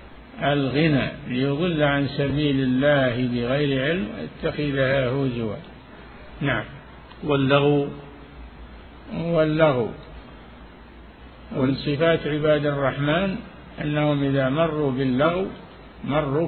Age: 50-69